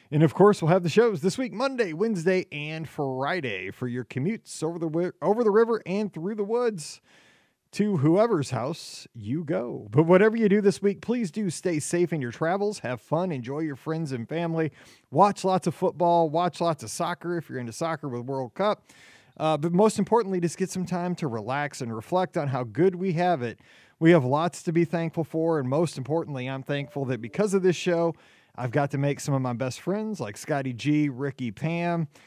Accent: American